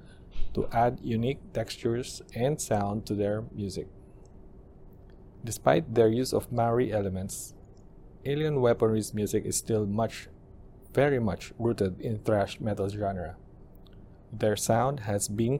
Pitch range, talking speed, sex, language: 100-120 Hz, 125 wpm, male, English